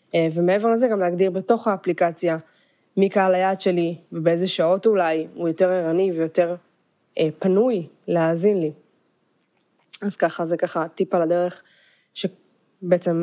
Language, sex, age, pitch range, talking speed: Hebrew, female, 20-39, 170-195 Hz, 130 wpm